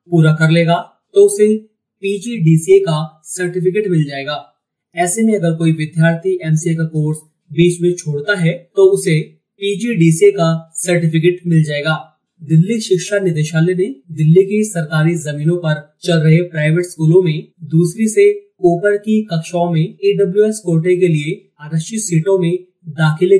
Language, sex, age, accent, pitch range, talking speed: Hindi, male, 30-49, native, 155-185 Hz, 150 wpm